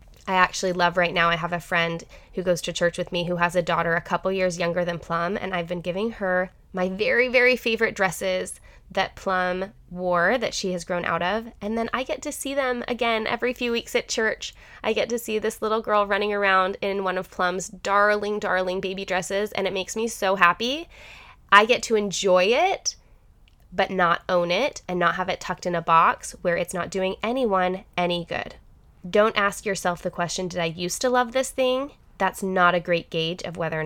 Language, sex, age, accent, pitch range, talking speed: English, female, 20-39, American, 175-225 Hz, 220 wpm